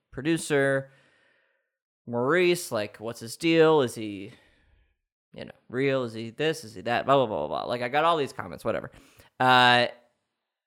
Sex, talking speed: male, 175 wpm